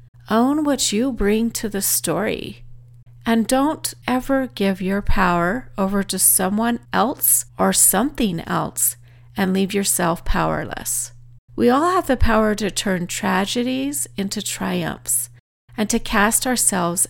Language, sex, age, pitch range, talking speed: English, female, 40-59, 155-225 Hz, 135 wpm